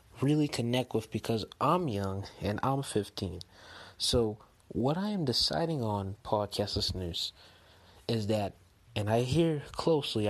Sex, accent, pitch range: male, American, 105-130 Hz